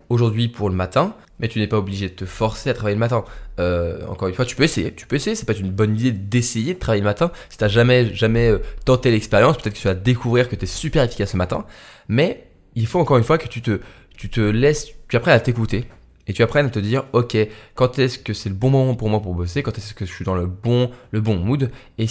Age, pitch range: 20-39, 105-135 Hz